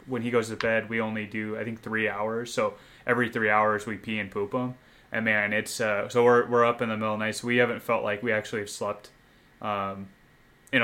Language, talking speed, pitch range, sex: English, 255 wpm, 110-120 Hz, male